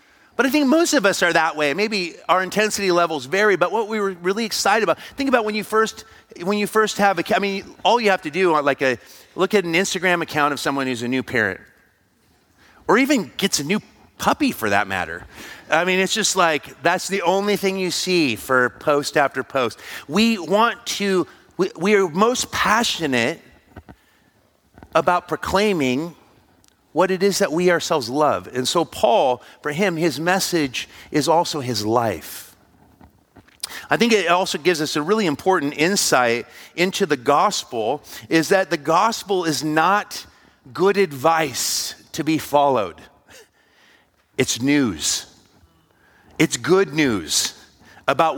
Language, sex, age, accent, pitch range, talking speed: English, male, 40-59, American, 145-200 Hz, 165 wpm